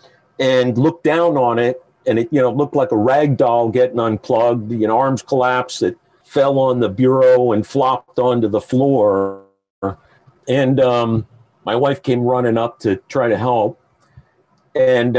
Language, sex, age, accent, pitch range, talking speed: English, male, 50-69, American, 120-140 Hz, 165 wpm